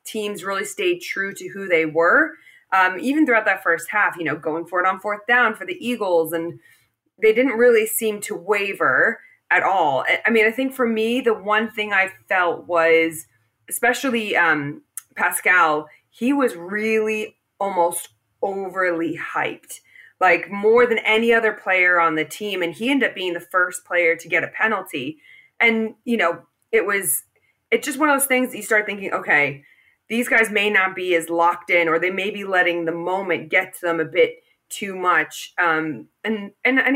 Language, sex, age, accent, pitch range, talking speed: English, female, 20-39, American, 170-225 Hz, 190 wpm